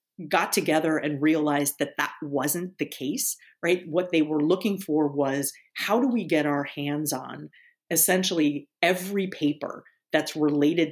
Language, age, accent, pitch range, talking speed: English, 40-59, American, 145-180 Hz, 155 wpm